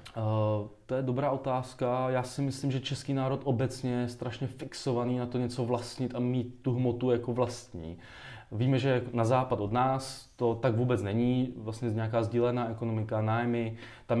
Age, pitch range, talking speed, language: 20-39, 110-125 Hz, 175 wpm, Czech